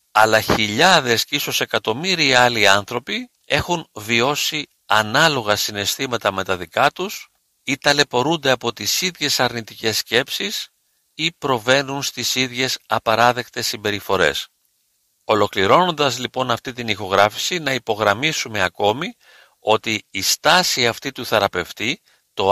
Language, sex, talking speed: Greek, male, 115 wpm